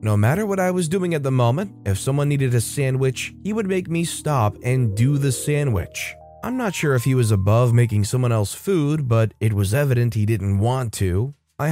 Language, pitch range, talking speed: English, 110-150 Hz, 220 wpm